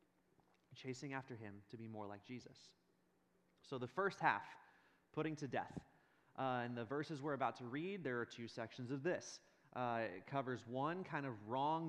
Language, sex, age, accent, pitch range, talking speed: English, male, 20-39, American, 120-145 Hz, 180 wpm